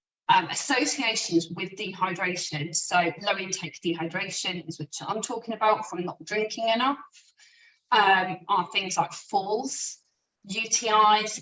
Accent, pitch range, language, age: British, 180-230 Hz, English, 30-49